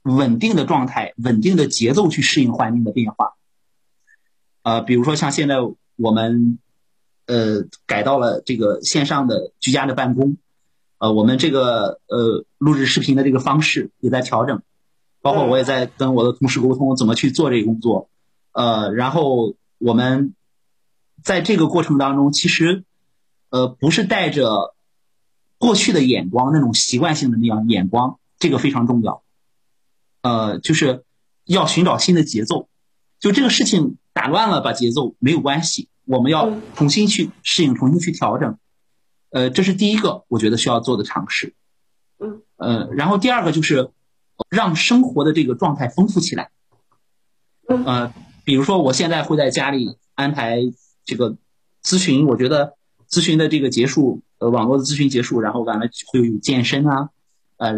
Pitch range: 120-155 Hz